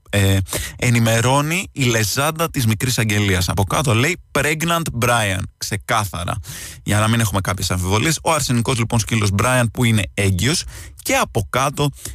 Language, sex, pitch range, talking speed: Greek, male, 100-135 Hz, 150 wpm